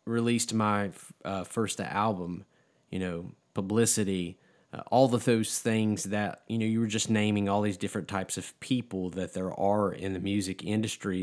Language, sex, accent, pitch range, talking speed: English, male, American, 95-115 Hz, 175 wpm